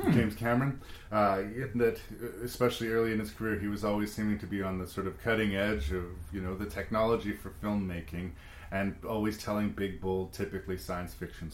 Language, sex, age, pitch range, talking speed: English, male, 30-49, 90-110 Hz, 185 wpm